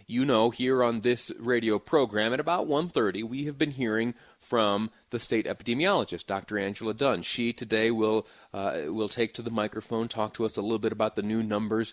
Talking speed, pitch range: 205 wpm, 95-110 Hz